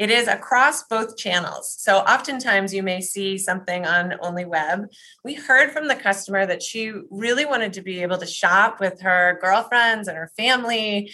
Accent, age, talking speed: American, 20-39, 180 wpm